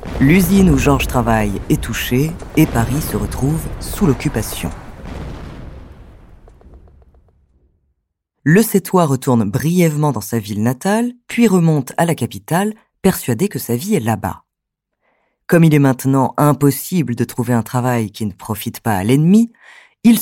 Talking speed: 140 wpm